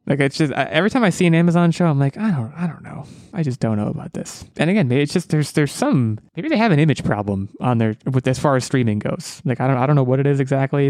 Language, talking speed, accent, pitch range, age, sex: English, 305 wpm, American, 115-150 Hz, 20-39, male